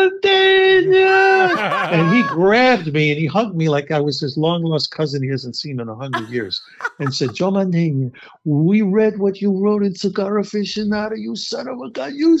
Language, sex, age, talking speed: English, male, 60-79, 185 wpm